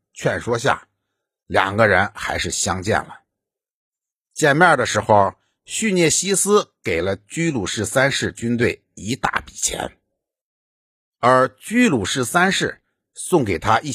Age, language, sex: 60-79, Chinese, male